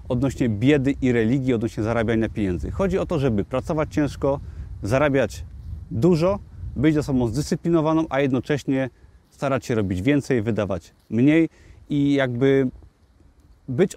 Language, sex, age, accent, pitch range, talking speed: Polish, male, 30-49, native, 110-145 Hz, 125 wpm